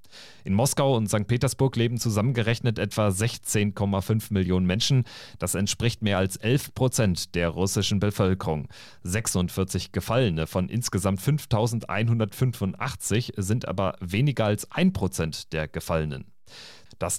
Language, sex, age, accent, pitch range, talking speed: German, male, 40-59, German, 95-120 Hz, 120 wpm